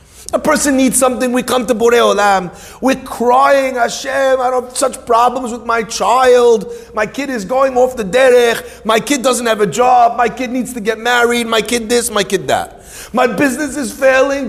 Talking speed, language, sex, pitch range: 205 wpm, English, male, 175-250 Hz